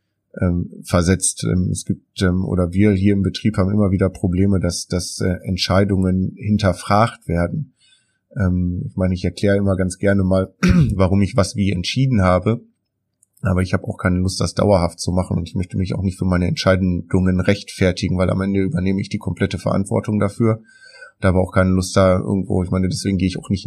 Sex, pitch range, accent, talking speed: male, 95-100 Hz, German, 190 wpm